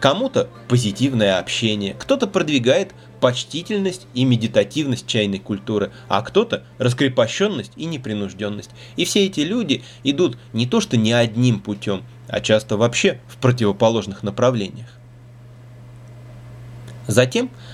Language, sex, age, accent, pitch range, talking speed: Russian, male, 20-39, native, 110-140 Hz, 110 wpm